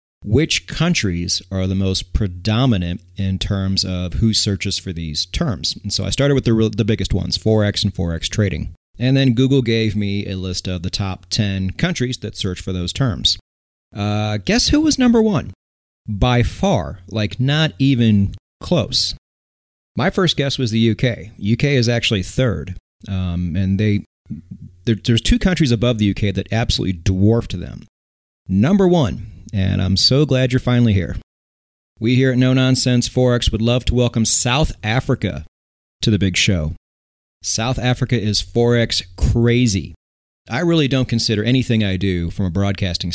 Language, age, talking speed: English, 30-49, 165 wpm